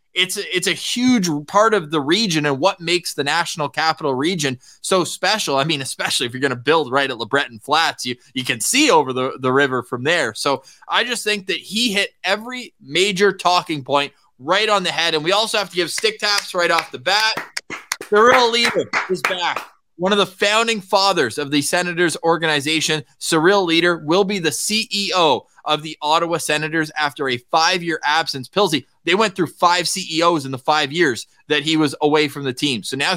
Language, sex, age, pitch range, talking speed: English, male, 20-39, 145-195 Hz, 210 wpm